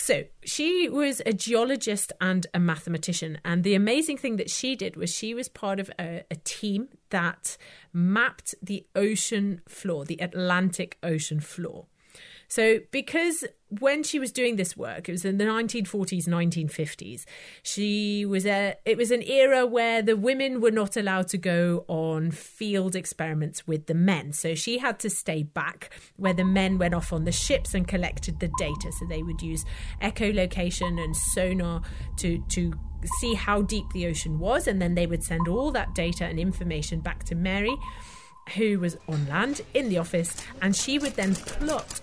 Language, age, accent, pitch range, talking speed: English, 30-49, British, 175-230 Hz, 180 wpm